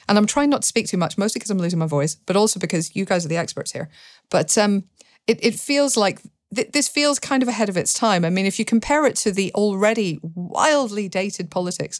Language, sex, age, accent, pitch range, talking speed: English, female, 40-59, British, 165-205 Hz, 245 wpm